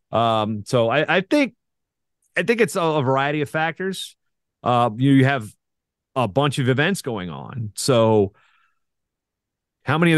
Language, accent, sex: English, American, male